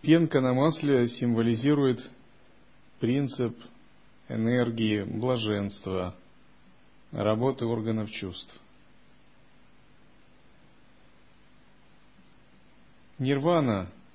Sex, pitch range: male, 115-150 Hz